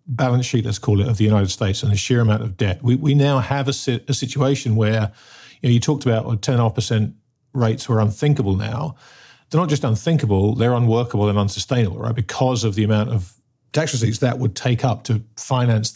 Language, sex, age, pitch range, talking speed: English, male, 50-69, 110-130 Hz, 215 wpm